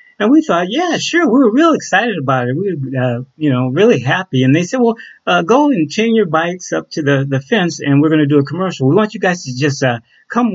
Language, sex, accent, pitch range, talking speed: English, male, American, 130-175 Hz, 275 wpm